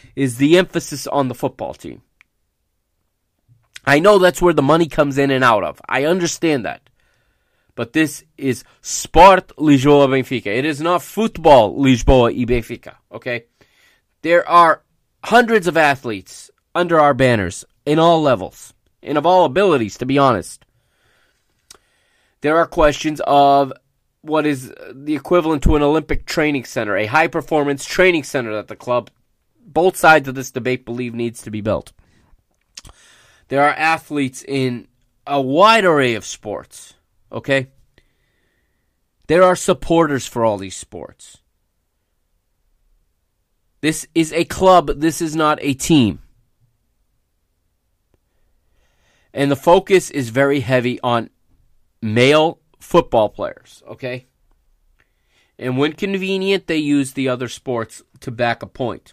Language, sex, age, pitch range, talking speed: English, male, 30-49, 115-155 Hz, 135 wpm